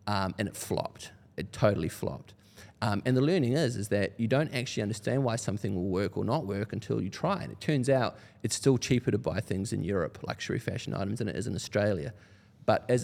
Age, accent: 30-49, Australian